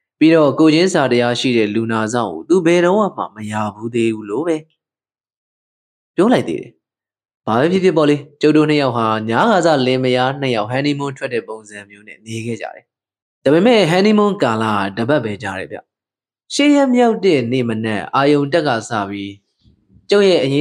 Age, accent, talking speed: 20-39, Indian, 75 wpm